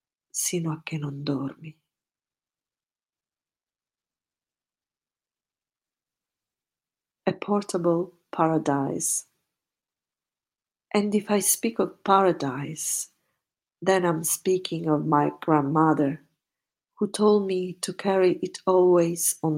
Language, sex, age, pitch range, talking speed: Italian, female, 40-59, 155-185 Hz, 85 wpm